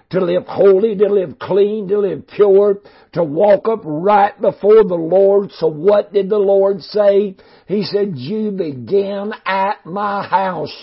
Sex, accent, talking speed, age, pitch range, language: male, American, 160 wpm, 60-79, 190-210 Hz, English